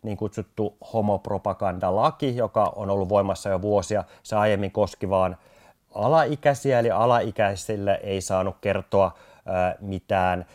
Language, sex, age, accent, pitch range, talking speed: Finnish, male, 30-49, native, 90-105 Hz, 115 wpm